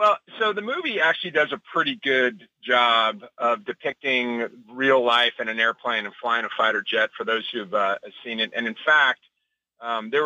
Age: 40-59